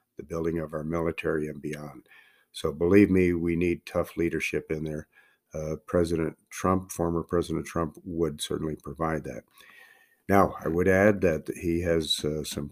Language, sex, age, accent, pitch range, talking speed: English, male, 50-69, American, 75-90 Hz, 160 wpm